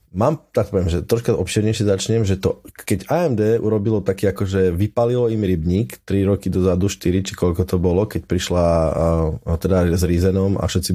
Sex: male